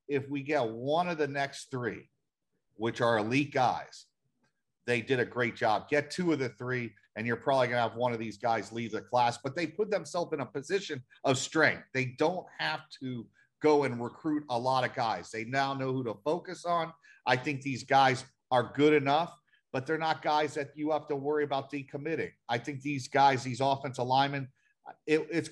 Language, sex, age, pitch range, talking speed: English, male, 40-59, 120-145 Hz, 205 wpm